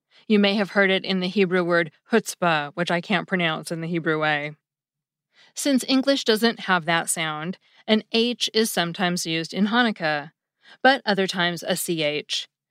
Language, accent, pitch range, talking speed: English, American, 165-220 Hz, 170 wpm